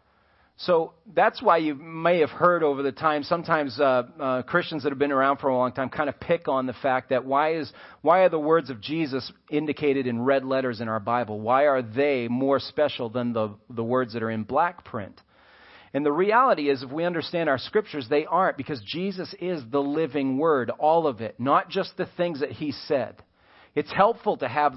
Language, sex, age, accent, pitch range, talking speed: English, male, 40-59, American, 130-170 Hz, 215 wpm